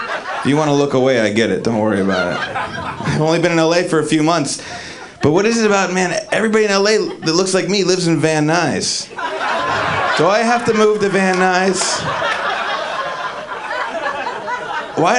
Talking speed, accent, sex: 185 wpm, American, male